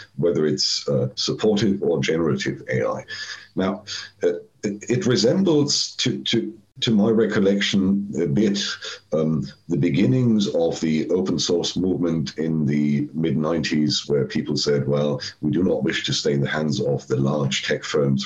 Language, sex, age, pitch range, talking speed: English, male, 50-69, 70-95 Hz, 155 wpm